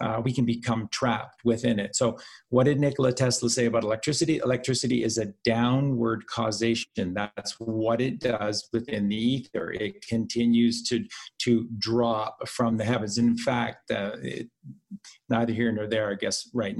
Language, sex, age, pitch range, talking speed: English, male, 50-69, 110-125 Hz, 165 wpm